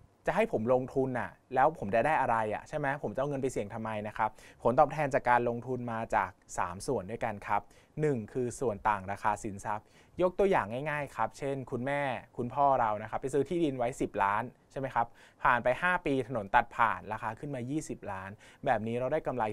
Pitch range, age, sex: 105-135 Hz, 20-39, male